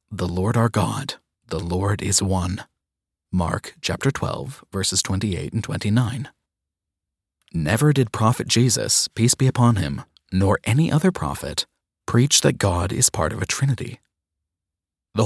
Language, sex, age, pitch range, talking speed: English, male, 30-49, 90-120 Hz, 140 wpm